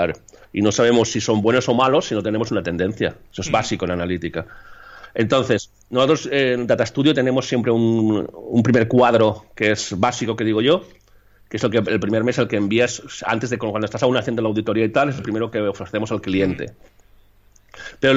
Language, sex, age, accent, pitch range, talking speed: Spanish, male, 40-59, Spanish, 105-135 Hz, 210 wpm